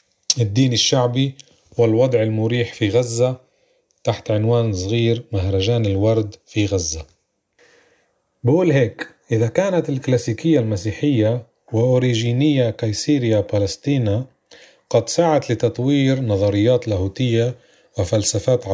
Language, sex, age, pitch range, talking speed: Arabic, male, 30-49, 105-130 Hz, 90 wpm